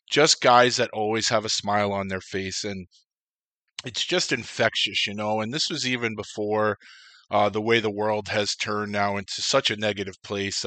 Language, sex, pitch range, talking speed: English, male, 100-115 Hz, 190 wpm